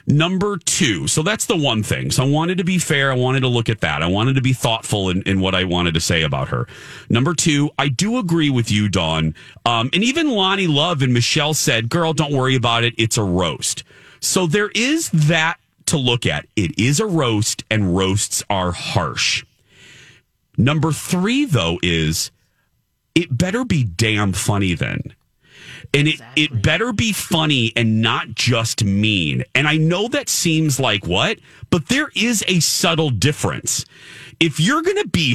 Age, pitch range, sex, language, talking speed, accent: 40-59, 105-160 Hz, male, English, 185 wpm, American